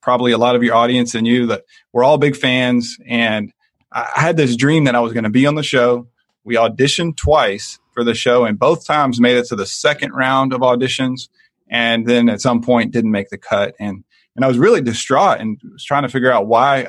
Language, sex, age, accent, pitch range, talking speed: English, male, 30-49, American, 120-140 Hz, 235 wpm